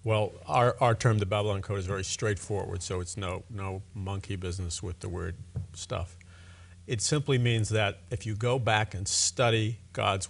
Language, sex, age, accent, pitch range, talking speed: English, male, 50-69, American, 95-125 Hz, 180 wpm